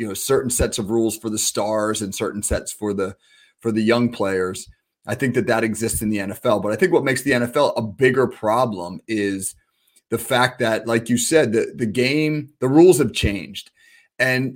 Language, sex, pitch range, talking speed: English, male, 115-155 Hz, 210 wpm